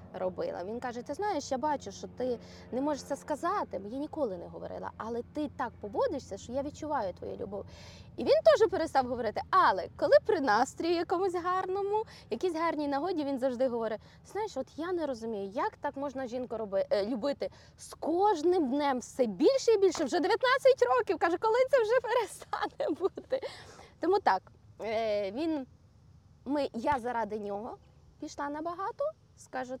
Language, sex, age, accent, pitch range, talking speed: Ukrainian, female, 20-39, native, 225-345 Hz, 160 wpm